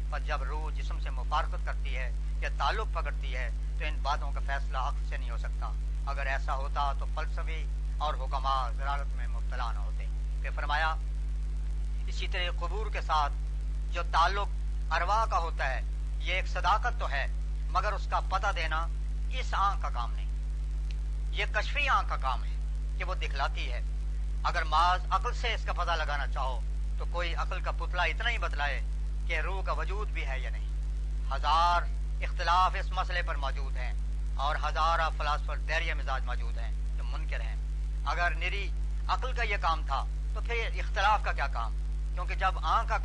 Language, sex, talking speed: Urdu, female, 180 wpm